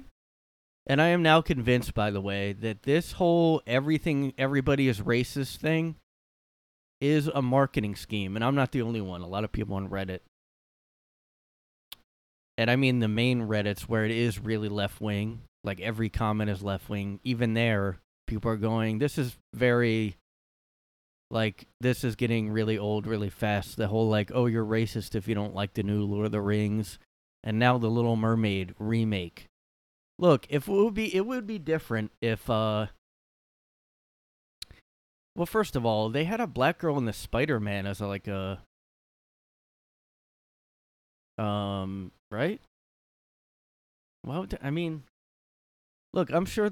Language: English